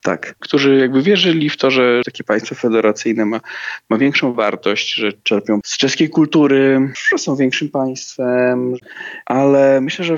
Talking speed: 155 wpm